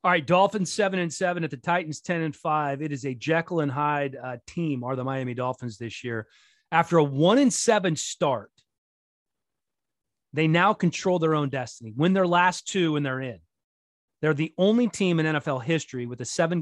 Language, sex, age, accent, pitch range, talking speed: English, male, 30-49, American, 145-185 Hz, 200 wpm